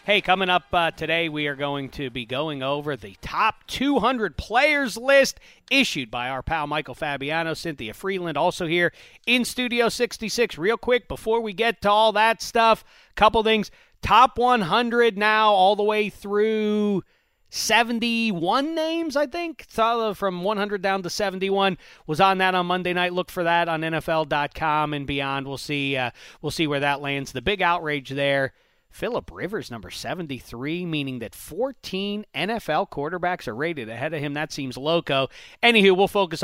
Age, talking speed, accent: 40-59, 170 wpm, American